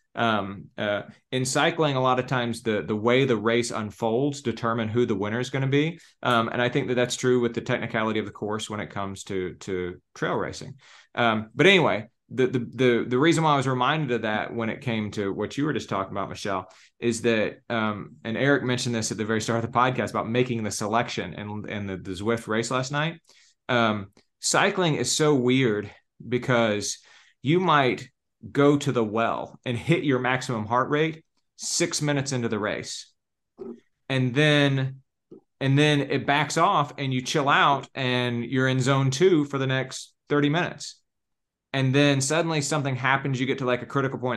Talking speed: 200 wpm